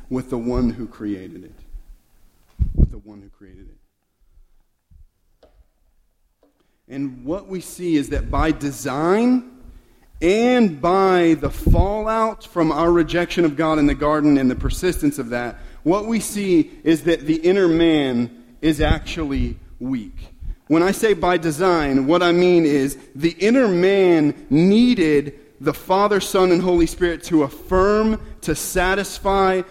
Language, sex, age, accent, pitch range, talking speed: English, male, 40-59, American, 165-220 Hz, 145 wpm